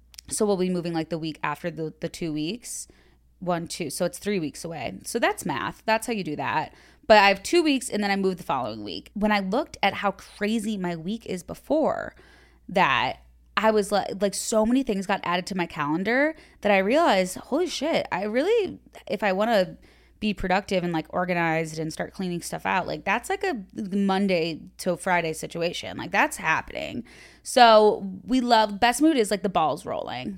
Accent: American